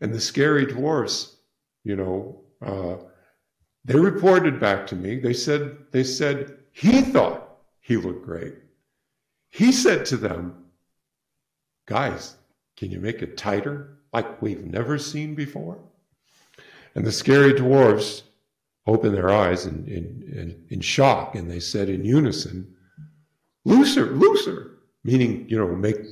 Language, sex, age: English, male, 50-69